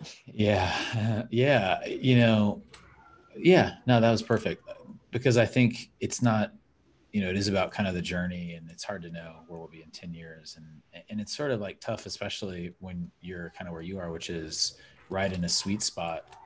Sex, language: male, English